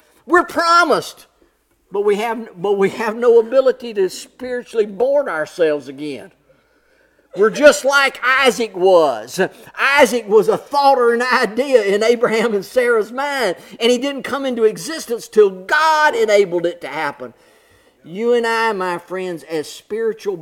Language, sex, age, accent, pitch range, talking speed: English, male, 50-69, American, 170-260 Hz, 150 wpm